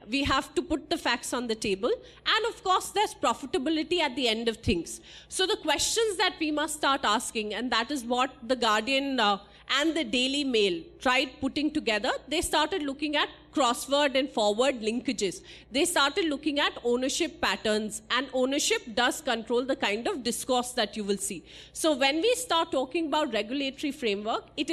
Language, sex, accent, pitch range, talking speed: English, female, Indian, 250-330 Hz, 180 wpm